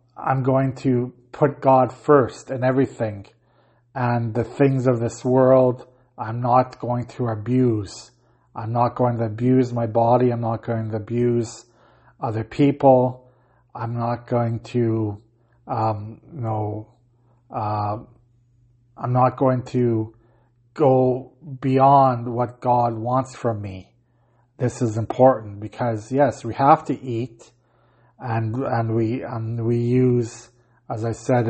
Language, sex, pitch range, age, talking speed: English, male, 115-130 Hz, 40-59, 135 wpm